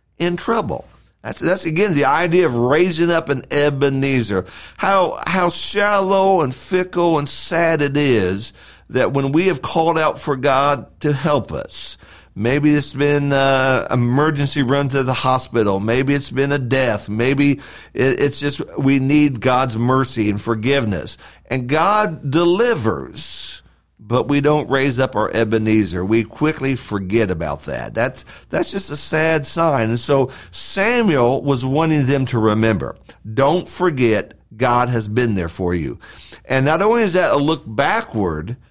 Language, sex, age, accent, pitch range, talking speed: English, male, 50-69, American, 120-165 Hz, 155 wpm